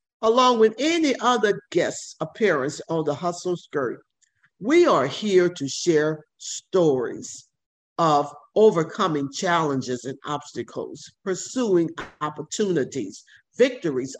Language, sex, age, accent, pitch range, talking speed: English, male, 50-69, American, 150-225 Hz, 100 wpm